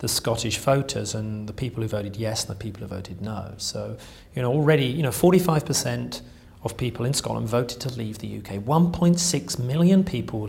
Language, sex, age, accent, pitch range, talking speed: English, male, 40-59, British, 115-170 Hz, 195 wpm